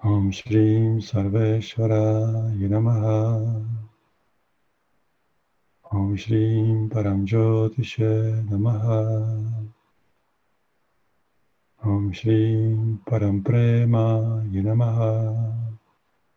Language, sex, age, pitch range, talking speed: Czech, male, 50-69, 110-115 Hz, 50 wpm